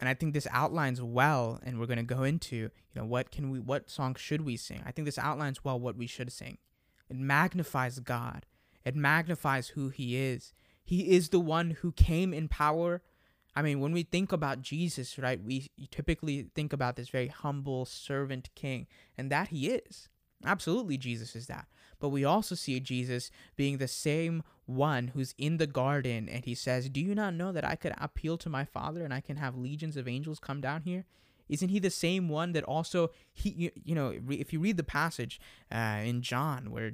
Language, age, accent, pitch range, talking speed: English, 20-39, American, 125-155 Hz, 210 wpm